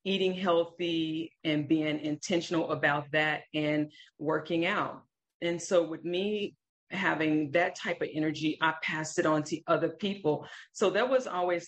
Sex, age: female, 40-59